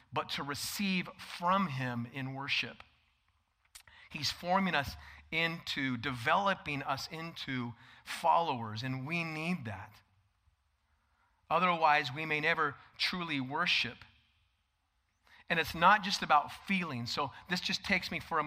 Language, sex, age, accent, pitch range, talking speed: English, male, 40-59, American, 120-180 Hz, 125 wpm